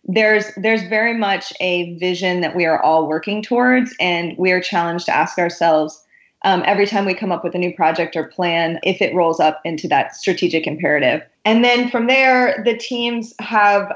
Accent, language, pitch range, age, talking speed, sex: American, English, 170-205 Hz, 20-39, 200 wpm, female